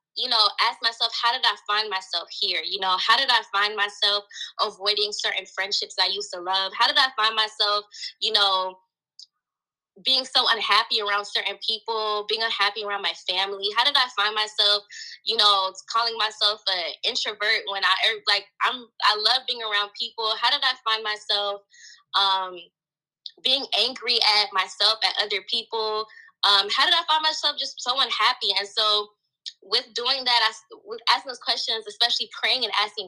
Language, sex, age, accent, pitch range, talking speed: English, female, 10-29, American, 195-240 Hz, 175 wpm